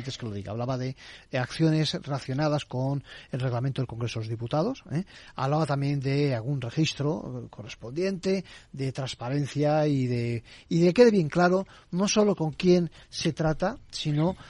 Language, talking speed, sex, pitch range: Spanish, 170 wpm, male, 130-170 Hz